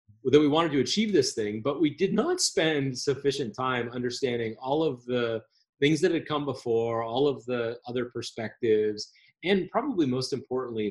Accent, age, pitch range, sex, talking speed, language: American, 30-49, 115-160 Hz, male, 175 wpm, English